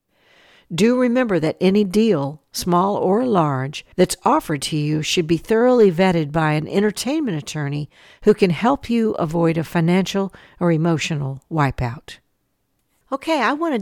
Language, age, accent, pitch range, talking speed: English, 60-79, American, 160-210 Hz, 150 wpm